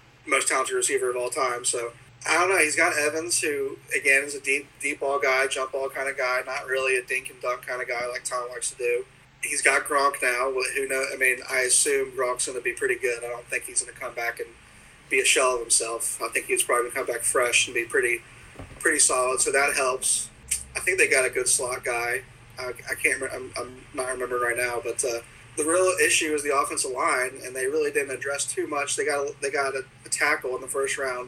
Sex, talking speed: male, 255 wpm